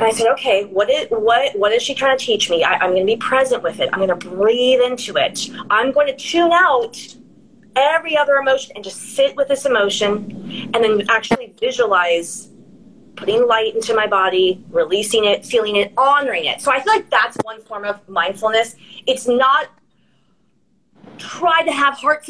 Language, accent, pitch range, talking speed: English, American, 215-280 Hz, 185 wpm